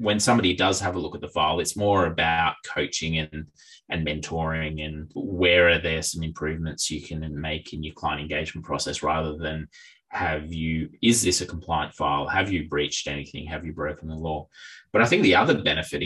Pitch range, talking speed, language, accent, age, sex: 75-90 Hz, 200 wpm, English, Australian, 20-39, male